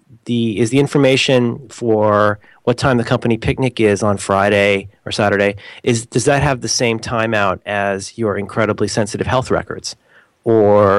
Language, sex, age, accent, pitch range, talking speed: English, male, 30-49, American, 110-140 Hz, 160 wpm